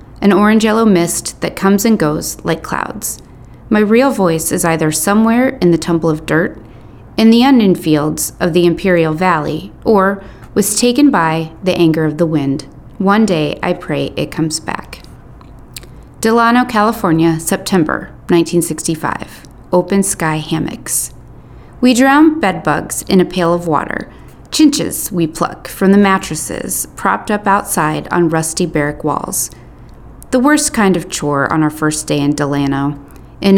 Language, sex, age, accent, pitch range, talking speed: English, female, 30-49, American, 155-205 Hz, 150 wpm